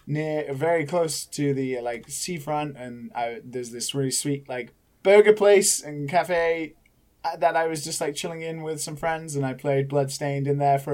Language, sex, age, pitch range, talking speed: English, male, 20-39, 135-175 Hz, 190 wpm